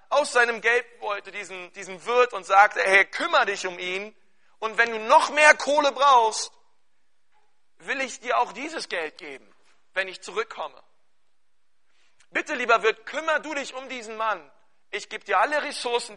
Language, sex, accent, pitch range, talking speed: German, male, German, 190-275 Hz, 165 wpm